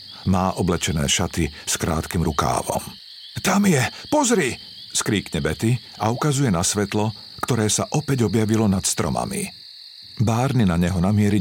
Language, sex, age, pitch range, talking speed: Slovak, male, 50-69, 95-120 Hz, 130 wpm